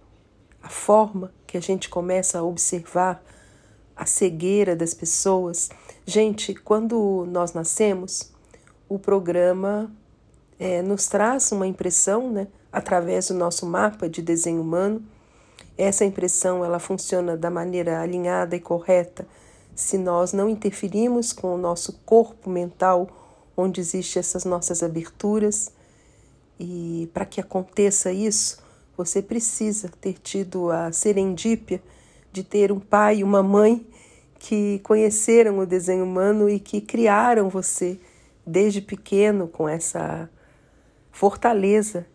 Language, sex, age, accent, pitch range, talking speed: Portuguese, female, 50-69, Brazilian, 175-205 Hz, 120 wpm